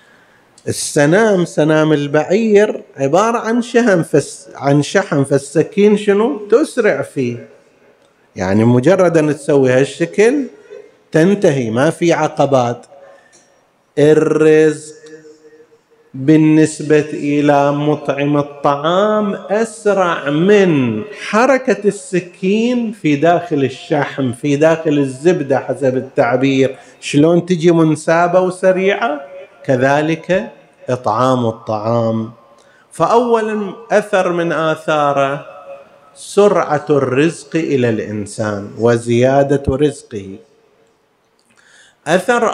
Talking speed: 80 wpm